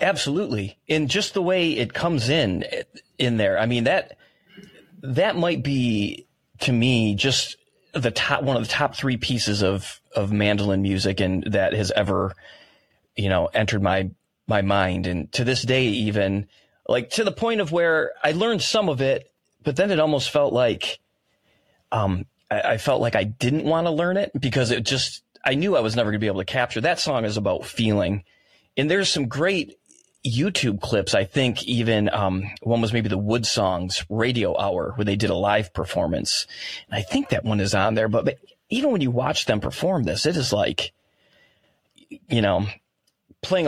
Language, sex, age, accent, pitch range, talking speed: English, male, 30-49, American, 100-130 Hz, 190 wpm